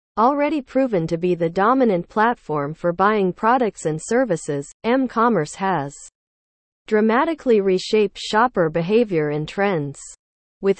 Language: English